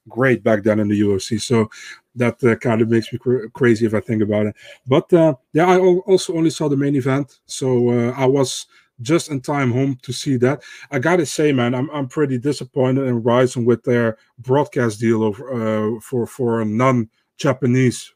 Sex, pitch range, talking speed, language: male, 120-140 Hz, 200 wpm, English